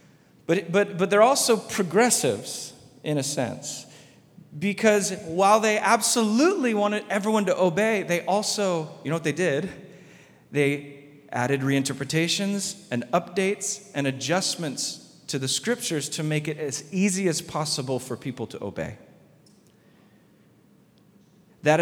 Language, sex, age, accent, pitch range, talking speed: English, male, 40-59, American, 135-180 Hz, 125 wpm